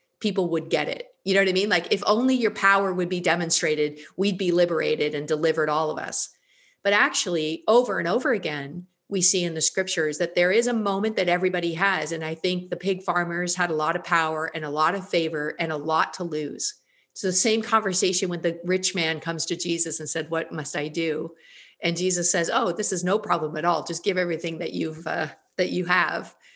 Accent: American